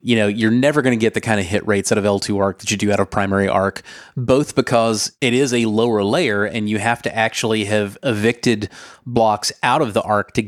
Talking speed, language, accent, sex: 245 wpm, English, American, male